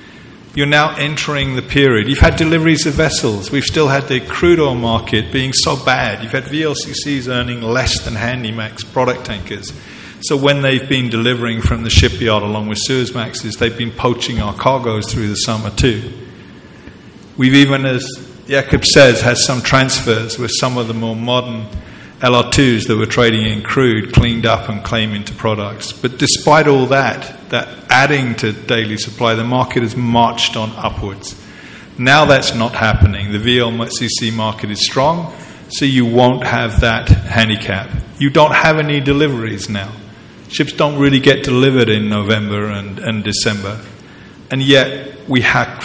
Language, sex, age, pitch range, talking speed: English, male, 50-69, 110-135 Hz, 165 wpm